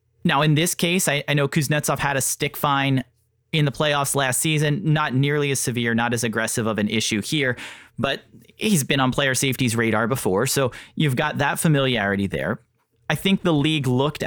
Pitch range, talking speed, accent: 120-150 Hz, 200 wpm, American